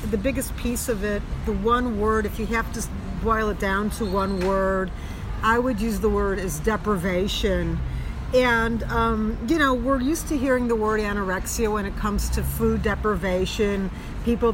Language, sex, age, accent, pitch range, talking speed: English, female, 50-69, American, 185-230 Hz, 180 wpm